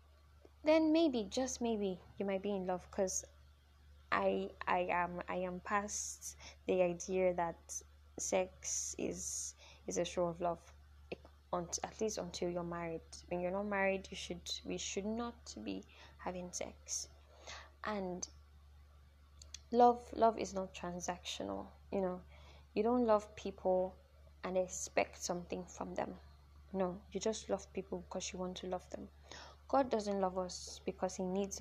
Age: 10-29